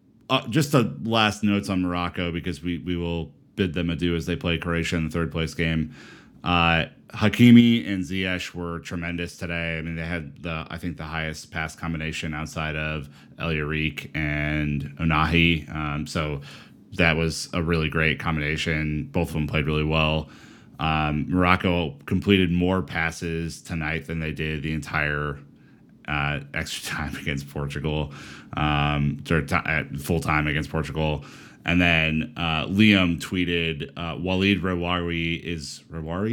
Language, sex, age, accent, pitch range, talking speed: English, male, 30-49, American, 80-90 Hz, 155 wpm